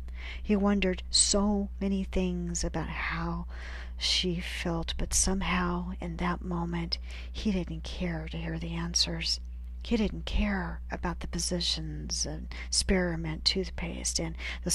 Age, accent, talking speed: 40-59, American, 130 wpm